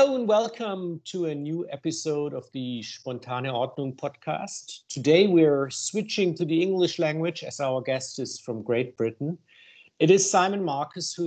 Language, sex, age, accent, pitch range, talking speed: German, male, 50-69, German, 130-170 Hz, 165 wpm